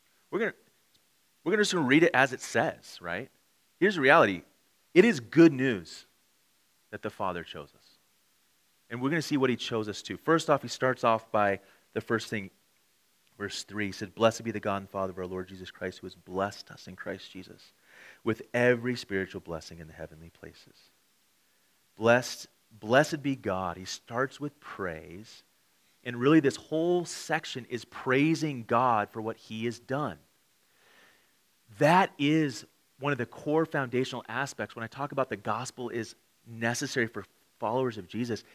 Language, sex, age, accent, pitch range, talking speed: English, male, 30-49, American, 105-140 Hz, 180 wpm